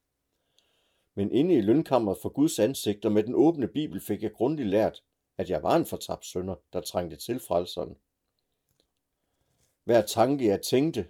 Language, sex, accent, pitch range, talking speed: English, male, Danish, 90-120 Hz, 160 wpm